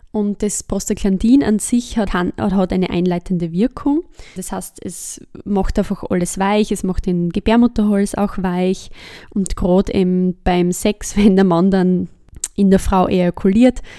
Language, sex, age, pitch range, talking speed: German, female, 20-39, 185-215 Hz, 150 wpm